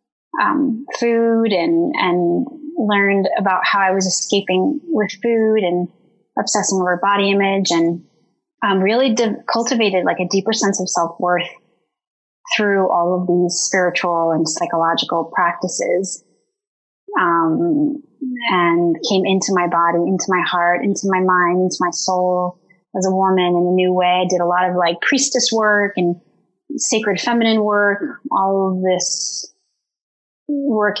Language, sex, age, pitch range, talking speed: English, female, 20-39, 180-225 Hz, 145 wpm